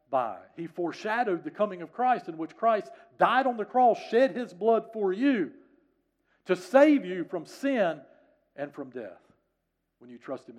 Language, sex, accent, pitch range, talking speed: English, male, American, 175-250 Hz, 170 wpm